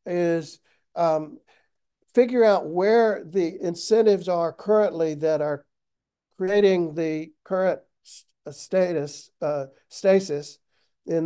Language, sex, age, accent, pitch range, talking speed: English, male, 60-79, American, 150-185 Hz, 95 wpm